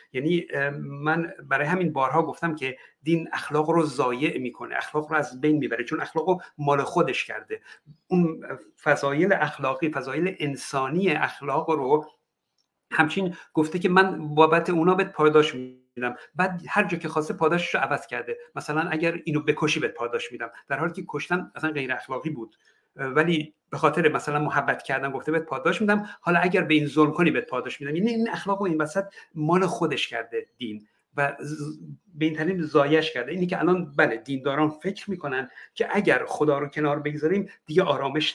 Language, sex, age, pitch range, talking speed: Persian, male, 60-79, 150-185 Hz, 175 wpm